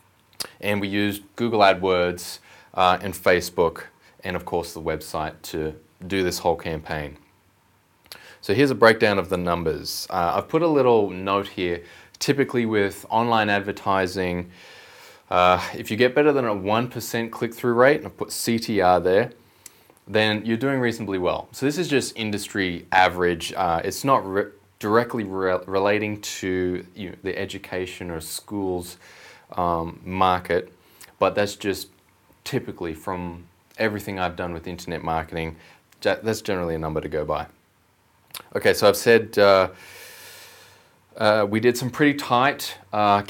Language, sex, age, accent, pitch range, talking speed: English, male, 20-39, Australian, 90-110 Hz, 145 wpm